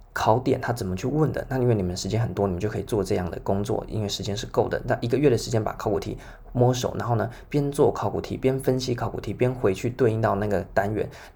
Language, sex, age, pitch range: Chinese, male, 20-39, 100-120 Hz